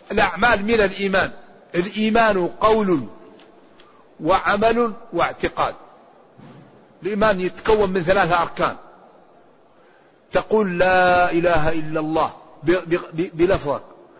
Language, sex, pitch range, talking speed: Arabic, male, 180-225 Hz, 75 wpm